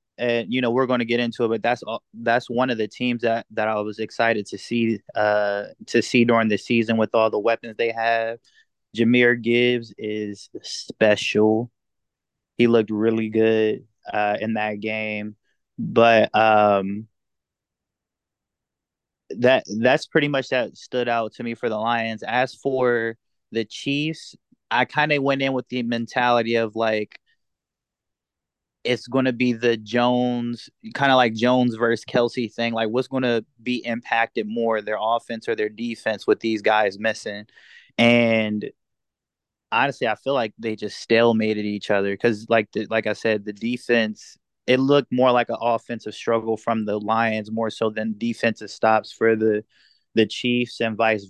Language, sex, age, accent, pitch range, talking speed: English, male, 20-39, American, 110-120 Hz, 165 wpm